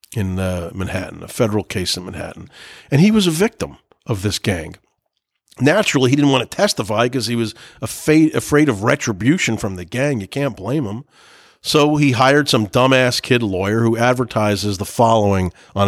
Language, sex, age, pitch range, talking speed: English, male, 40-59, 105-155 Hz, 180 wpm